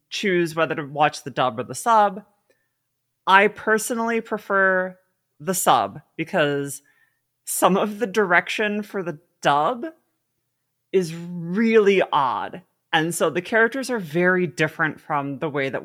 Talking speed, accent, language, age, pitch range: 135 wpm, American, English, 30-49, 145-205 Hz